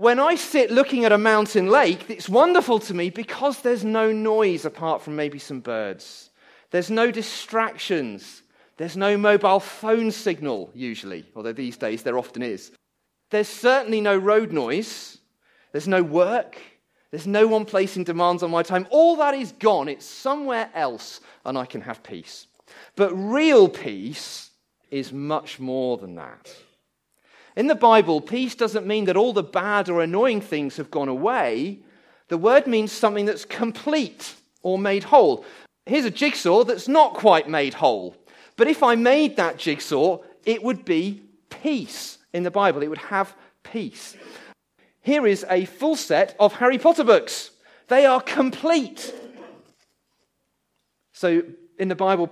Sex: male